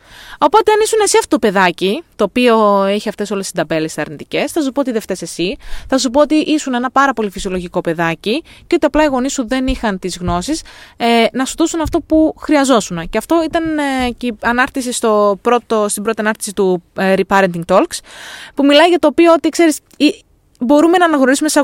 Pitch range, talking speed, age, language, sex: 220-325 Hz, 210 wpm, 20-39, Greek, female